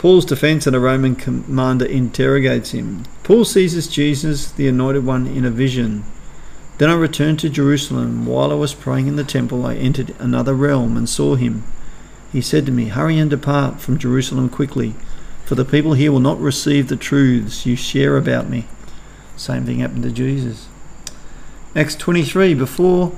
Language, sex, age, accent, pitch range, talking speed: English, male, 50-69, Australian, 120-150 Hz, 170 wpm